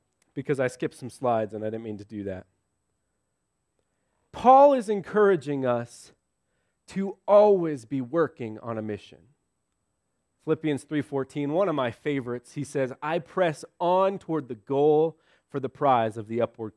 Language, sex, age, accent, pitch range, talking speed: English, male, 30-49, American, 120-165 Hz, 155 wpm